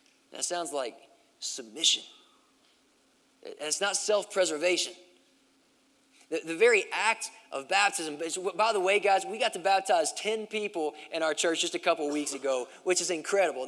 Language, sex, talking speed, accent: English, male, 150 wpm, American